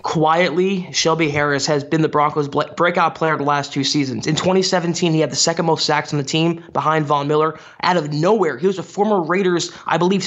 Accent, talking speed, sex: American, 220 wpm, male